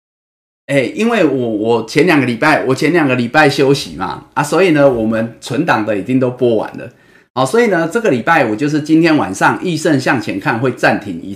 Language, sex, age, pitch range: Chinese, male, 30-49, 115-155 Hz